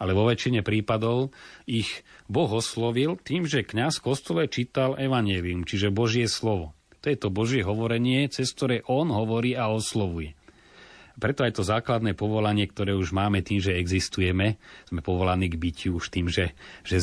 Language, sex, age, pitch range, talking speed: Slovak, male, 30-49, 90-110 Hz, 160 wpm